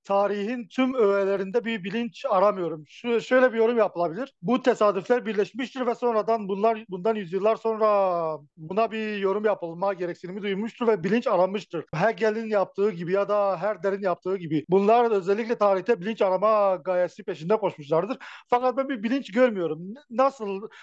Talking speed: 145 wpm